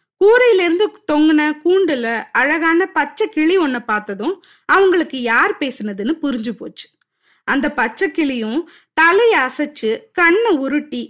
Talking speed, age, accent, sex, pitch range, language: 115 wpm, 20-39, native, female, 255-355 Hz, Tamil